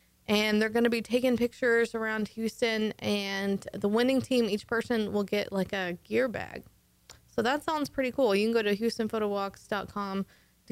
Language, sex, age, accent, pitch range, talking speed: English, female, 20-39, American, 195-230 Hz, 180 wpm